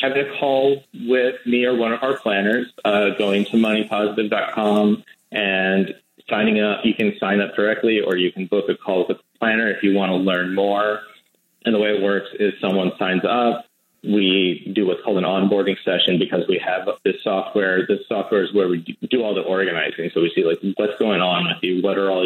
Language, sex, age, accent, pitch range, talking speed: English, male, 30-49, American, 90-105 Hz, 215 wpm